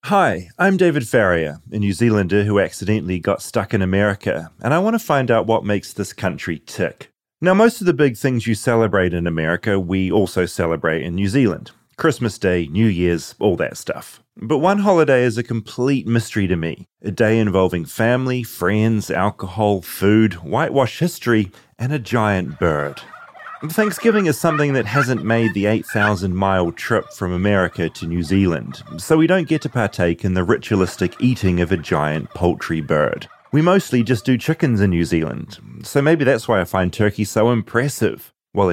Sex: male